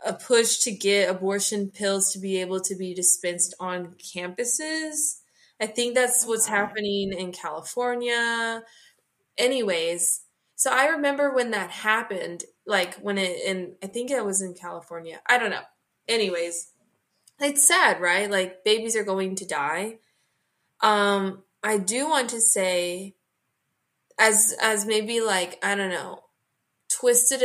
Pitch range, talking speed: 185-230 Hz, 140 wpm